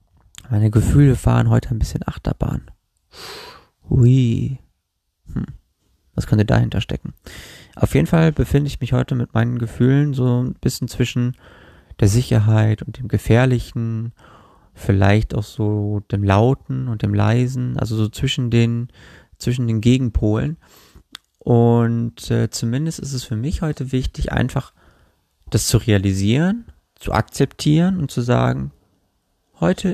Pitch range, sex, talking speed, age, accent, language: 100-130 Hz, male, 130 wpm, 30-49, German, German